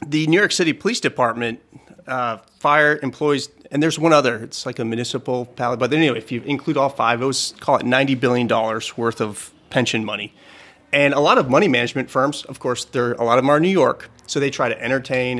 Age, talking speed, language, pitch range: 30-49, 220 wpm, English, 120-145 Hz